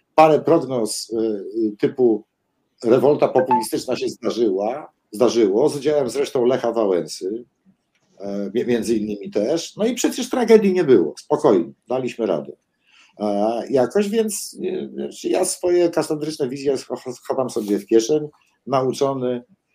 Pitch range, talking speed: 110-145 Hz, 115 wpm